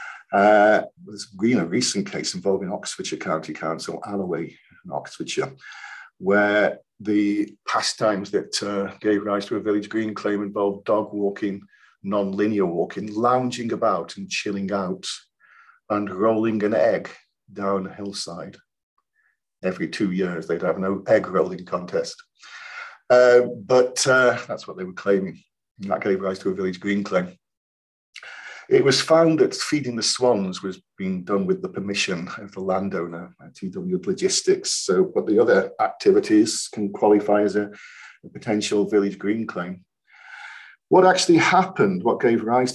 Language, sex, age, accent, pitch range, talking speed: English, male, 50-69, British, 100-135 Hz, 145 wpm